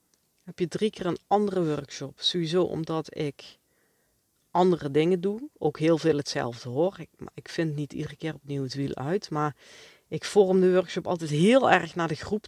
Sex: female